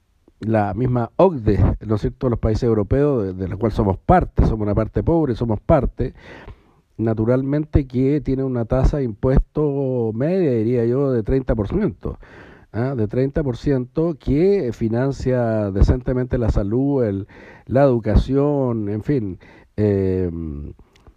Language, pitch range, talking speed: English, 105-130 Hz, 135 wpm